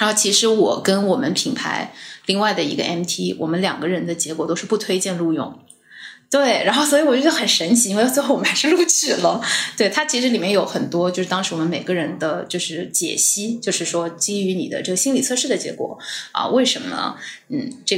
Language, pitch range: Chinese, 170-220 Hz